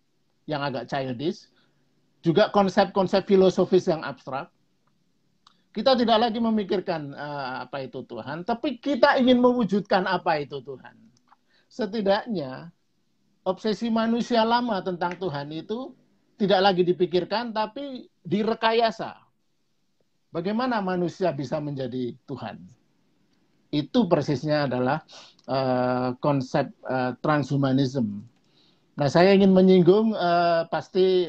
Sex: male